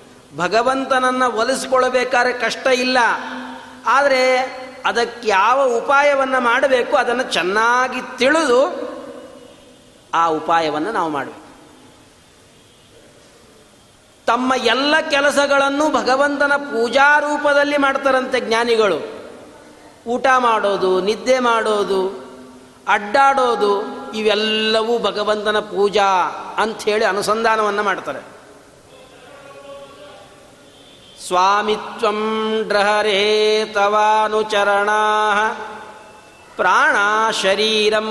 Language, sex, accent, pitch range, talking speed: Kannada, male, native, 200-245 Hz, 60 wpm